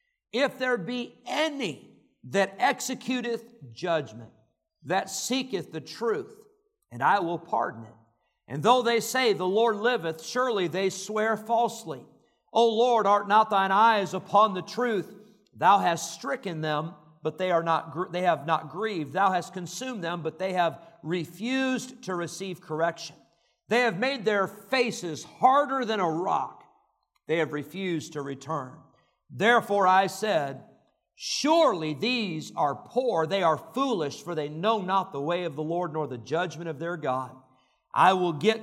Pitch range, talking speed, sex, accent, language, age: 165-230 Hz, 155 wpm, male, American, English, 50-69